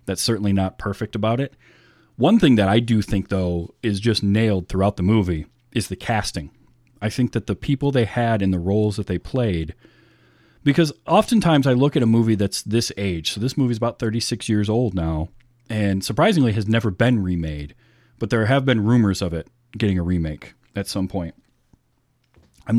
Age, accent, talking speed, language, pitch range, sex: 30-49, American, 195 wpm, English, 95-120 Hz, male